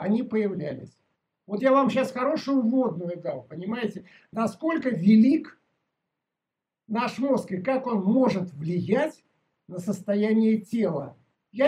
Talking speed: 120 wpm